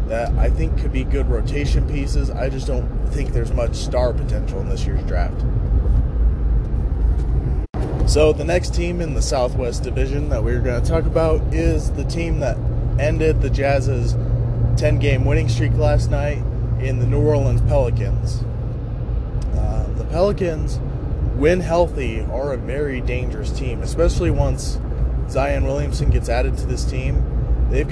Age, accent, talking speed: 30-49, American, 155 wpm